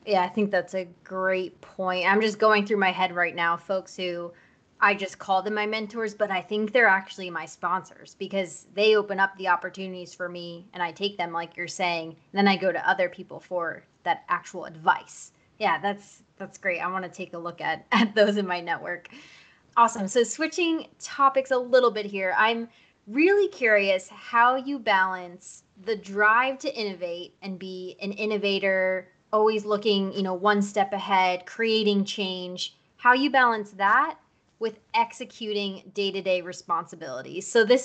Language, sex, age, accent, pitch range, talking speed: English, female, 20-39, American, 185-220 Hz, 180 wpm